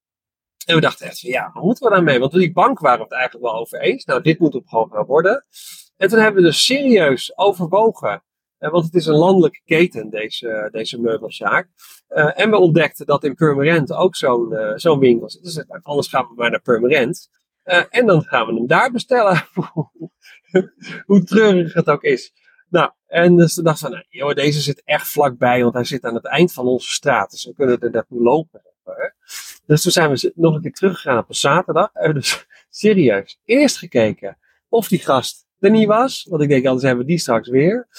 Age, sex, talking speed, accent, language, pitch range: 40-59, male, 215 wpm, Dutch, Dutch, 125-175 Hz